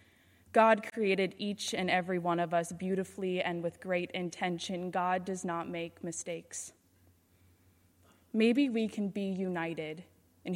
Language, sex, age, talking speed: English, female, 20-39, 135 wpm